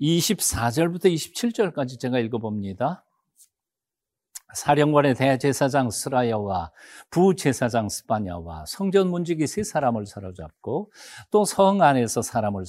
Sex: male